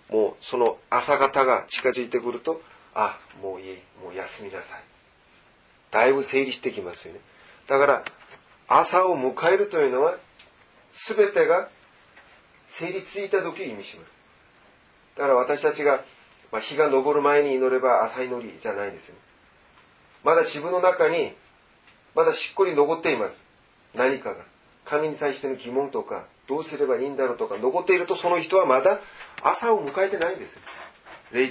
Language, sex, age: Japanese, male, 40-59